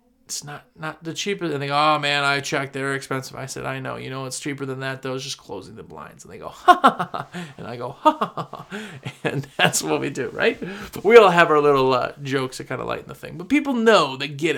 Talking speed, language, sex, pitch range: 280 wpm, English, male, 135-175 Hz